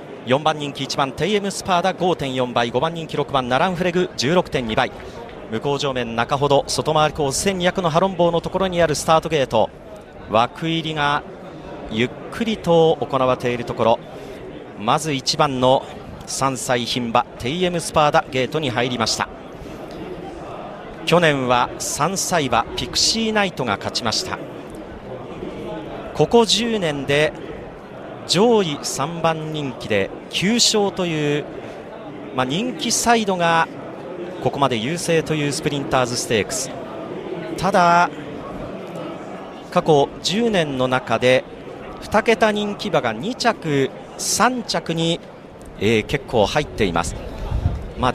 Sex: male